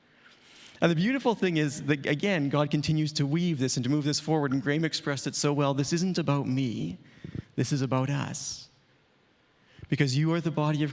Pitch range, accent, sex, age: 130-155 Hz, American, male, 40-59